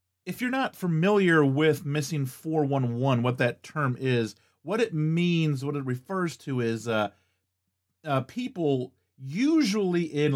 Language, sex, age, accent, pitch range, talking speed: English, male, 30-49, American, 110-140 Hz, 140 wpm